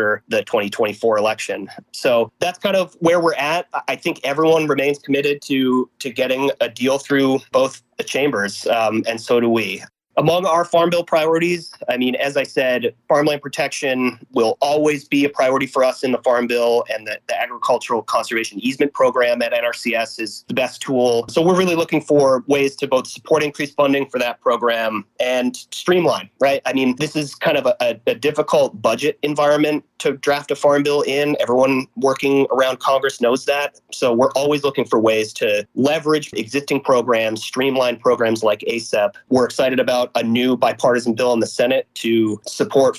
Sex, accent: male, American